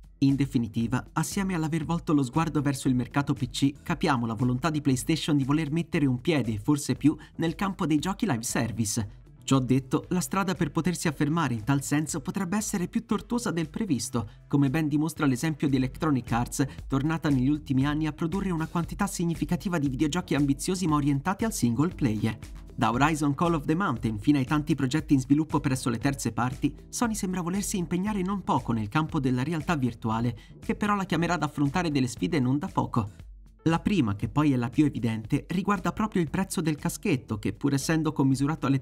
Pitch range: 130-170 Hz